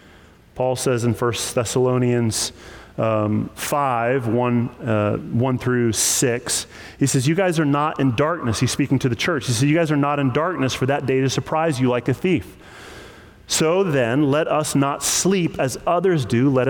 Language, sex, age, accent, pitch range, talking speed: English, male, 30-49, American, 120-165 Hz, 180 wpm